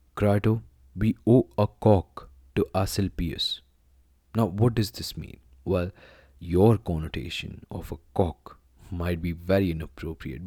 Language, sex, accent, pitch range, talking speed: English, male, Indian, 85-115 Hz, 125 wpm